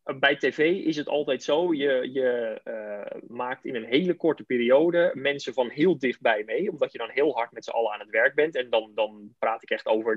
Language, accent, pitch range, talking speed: Dutch, Dutch, 115-135 Hz, 230 wpm